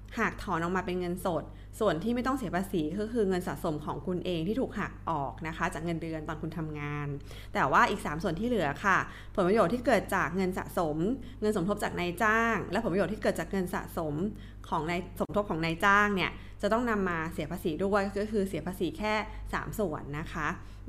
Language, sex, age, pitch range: Thai, female, 20-39, 170-210 Hz